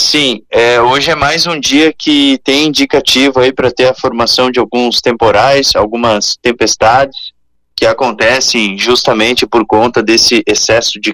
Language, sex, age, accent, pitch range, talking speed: Portuguese, male, 20-39, Brazilian, 125-165 Hz, 150 wpm